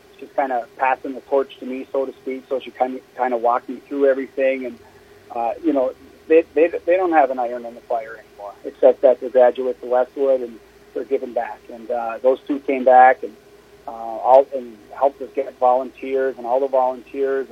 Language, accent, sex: English, American, male